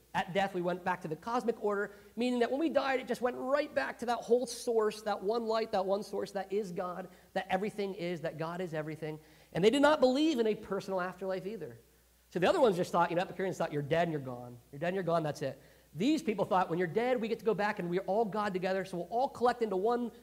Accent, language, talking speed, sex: American, English, 275 wpm, male